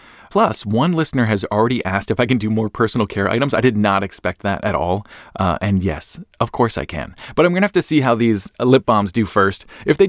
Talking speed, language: 255 wpm, English